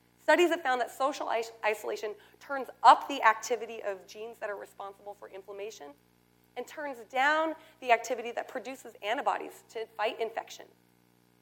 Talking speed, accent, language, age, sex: 145 wpm, American, English, 30-49, female